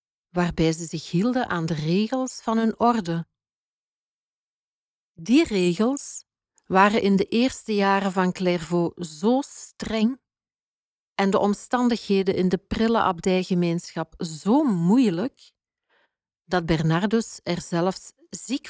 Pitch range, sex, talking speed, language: 175-220 Hz, female, 110 wpm, Dutch